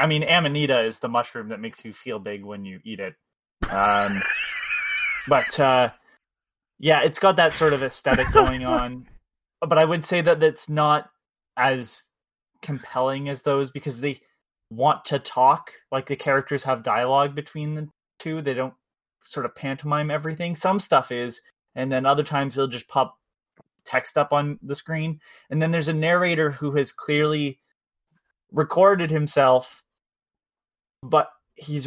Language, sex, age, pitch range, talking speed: English, male, 20-39, 125-150 Hz, 160 wpm